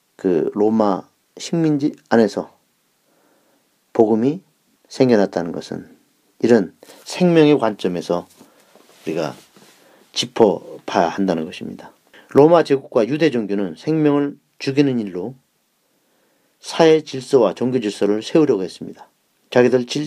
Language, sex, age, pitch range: Korean, male, 40-59, 110-150 Hz